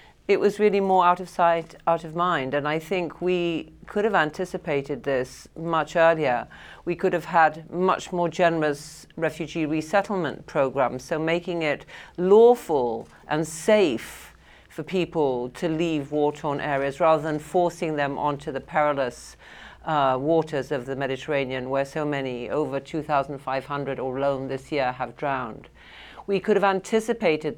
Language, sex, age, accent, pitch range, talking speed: English, female, 40-59, British, 140-175 Hz, 150 wpm